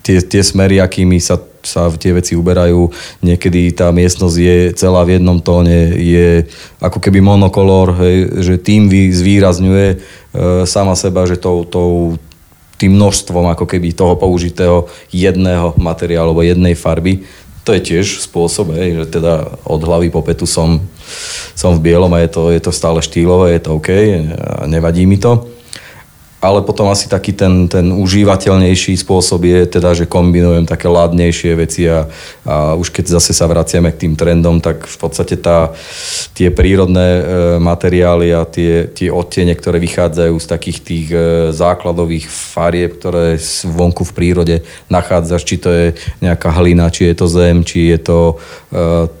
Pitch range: 85-90 Hz